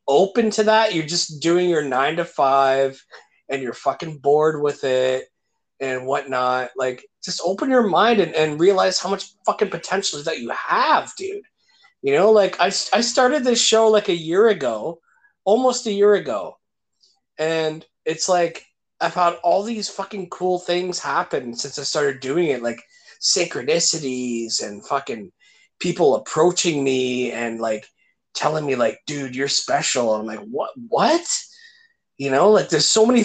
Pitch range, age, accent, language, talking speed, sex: 135-210 Hz, 30-49, American, English, 165 wpm, male